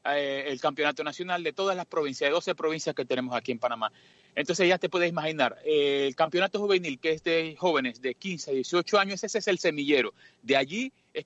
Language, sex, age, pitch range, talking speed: Spanish, male, 30-49, 145-190 Hz, 210 wpm